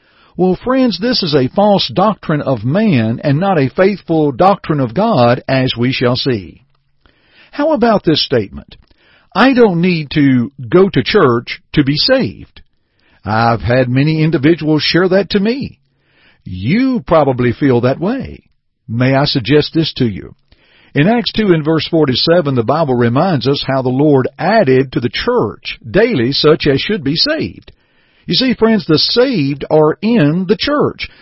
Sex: male